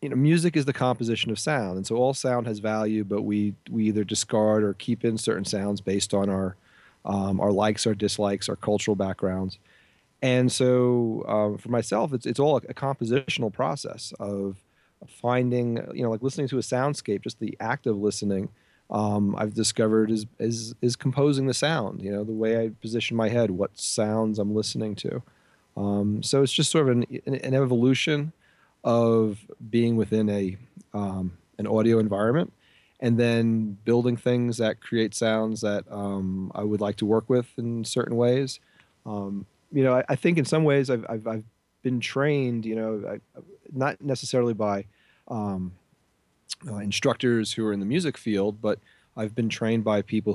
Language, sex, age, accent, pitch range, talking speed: English, male, 30-49, American, 105-125 Hz, 180 wpm